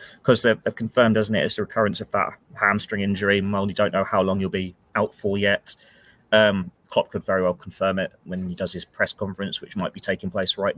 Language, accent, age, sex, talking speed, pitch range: English, British, 20-39, male, 235 wpm, 95-105 Hz